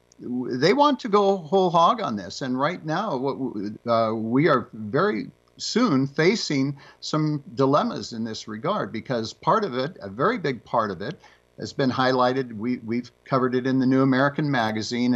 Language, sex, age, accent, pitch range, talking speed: English, male, 50-69, American, 115-140 Hz, 180 wpm